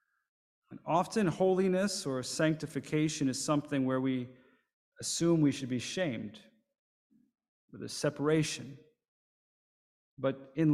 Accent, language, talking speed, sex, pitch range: American, English, 100 wpm, male, 120-150 Hz